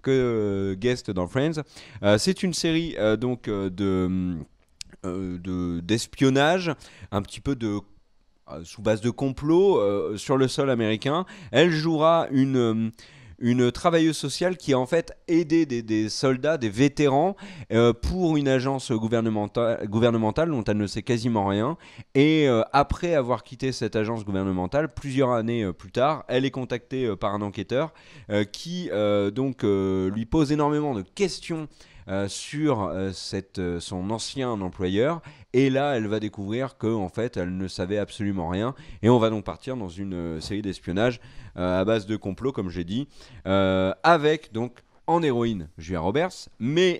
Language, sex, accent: French, male, French